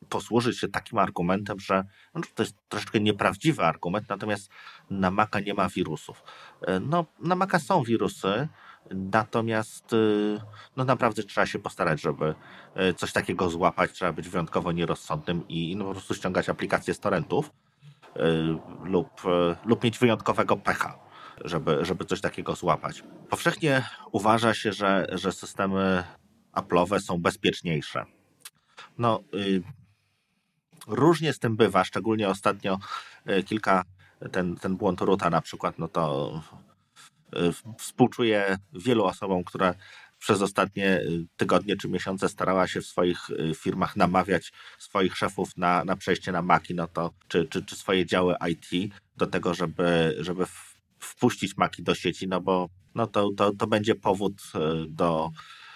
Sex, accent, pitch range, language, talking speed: male, native, 90-115 Hz, Polish, 140 wpm